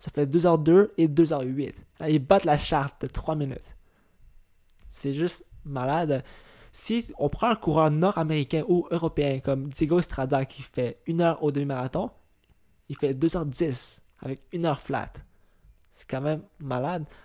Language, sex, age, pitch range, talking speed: French, male, 20-39, 135-165 Hz, 160 wpm